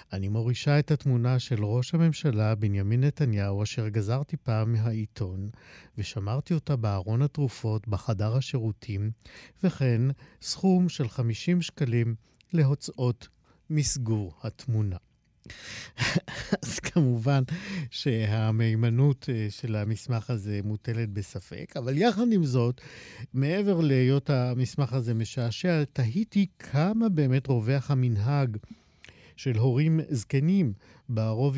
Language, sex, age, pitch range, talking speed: Hebrew, male, 50-69, 110-150 Hz, 100 wpm